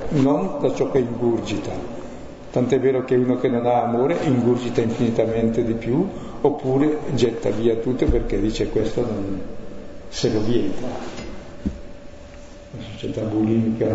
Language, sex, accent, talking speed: Italian, male, native, 135 wpm